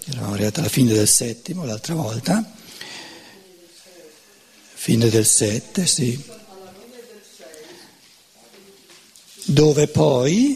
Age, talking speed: 60-79, 80 wpm